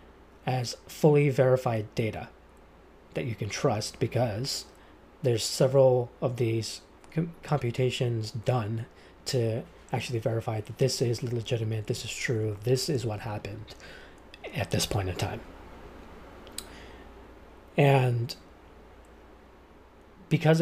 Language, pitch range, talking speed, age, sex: English, 105-135 Hz, 105 wpm, 30-49, male